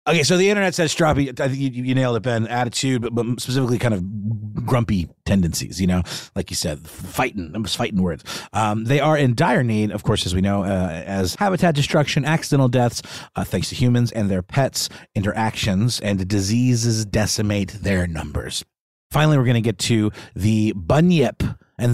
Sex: male